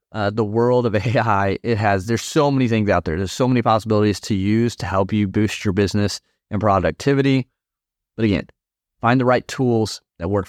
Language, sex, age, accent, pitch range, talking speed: English, male, 30-49, American, 100-115 Hz, 200 wpm